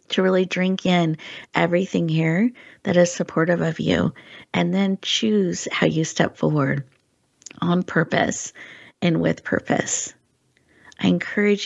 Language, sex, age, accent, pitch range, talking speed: English, female, 40-59, American, 155-180 Hz, 130 wpm